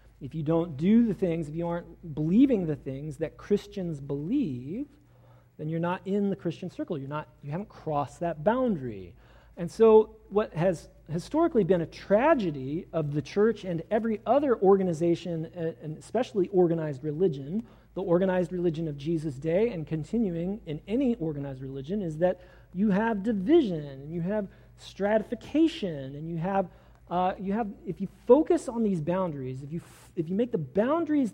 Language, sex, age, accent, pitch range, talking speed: English, male, 40-59, American, 155-220 Hz, 170 wpm